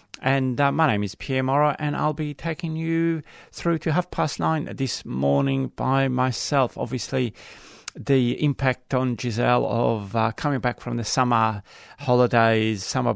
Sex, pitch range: male, 110-135 Hz